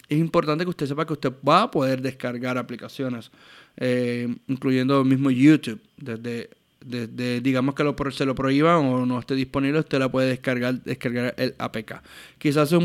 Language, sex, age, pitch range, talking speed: Spanish, male, 20-39, 125-155 Hz, 165 wpm